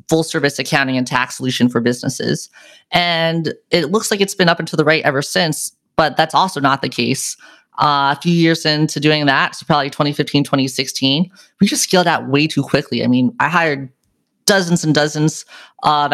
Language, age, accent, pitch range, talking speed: English, 30-49, American, 135-160 Hz, 195 wpm